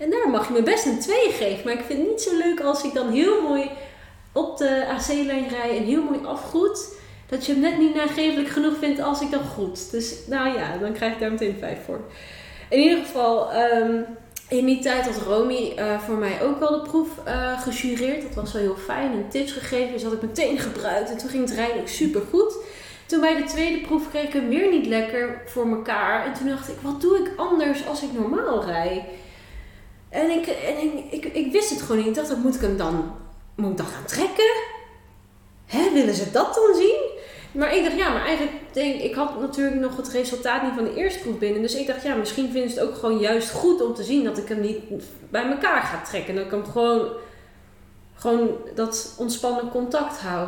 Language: Dutch